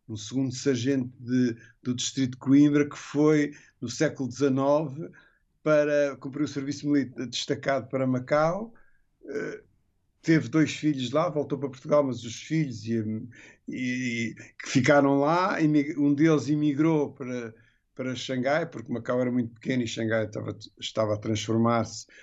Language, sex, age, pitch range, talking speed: Portuguese, male, 50-69, 115-145 Hz, 150 wpm